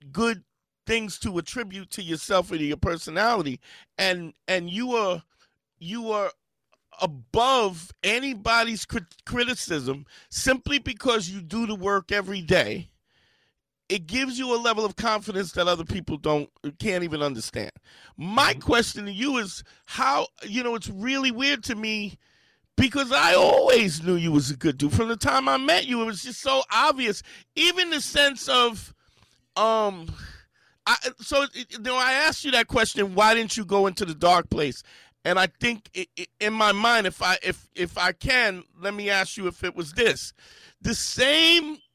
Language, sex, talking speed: English, male, 175 wpm